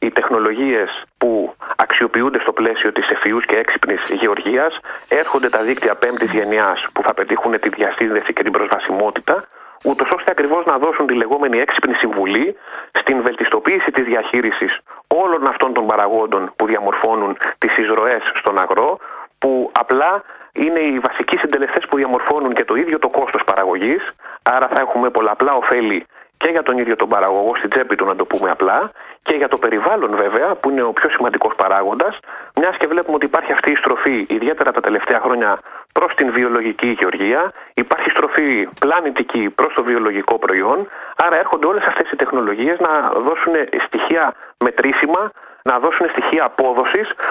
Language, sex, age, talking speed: Greek, male, 30-49, 160 wpm